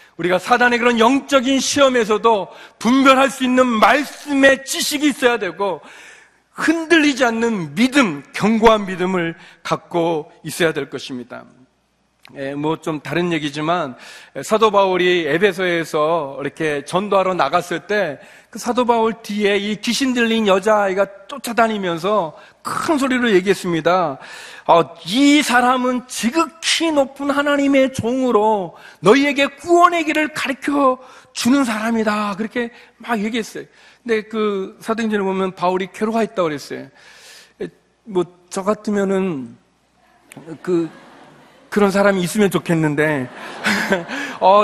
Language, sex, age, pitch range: Korean, male, 40-59, 185-245 Hz